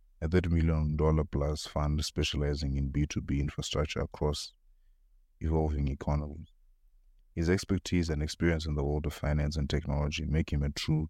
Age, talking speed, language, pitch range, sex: 30-49, 140 wpm, English, 75-85 Hz, male